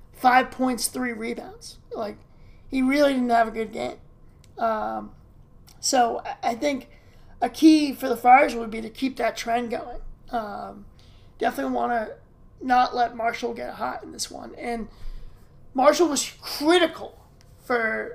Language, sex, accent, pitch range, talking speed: English, male, American, 230-260 Hz, 150 wpm